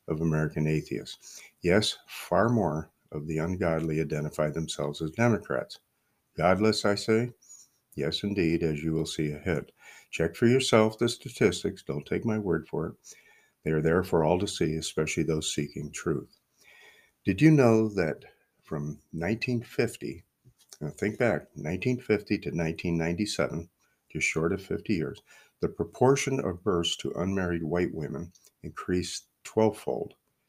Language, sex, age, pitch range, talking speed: English, male, 50-69, 80-105 Hz, 140 wpm